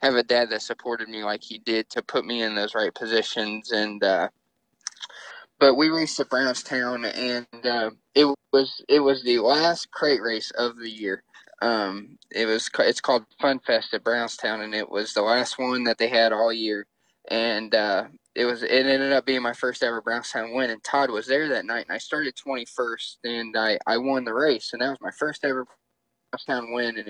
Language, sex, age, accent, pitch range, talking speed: English, male, 20-39, American, 110-130 Hz, 205 wpm